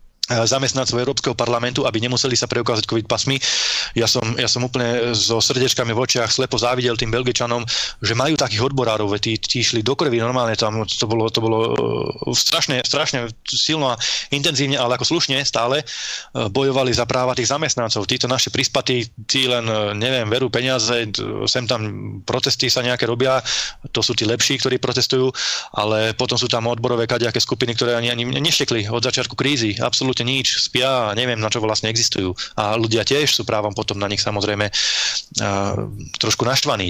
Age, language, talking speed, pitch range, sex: 20-39, Slovak, 175 wpm, 110-130 Hz, male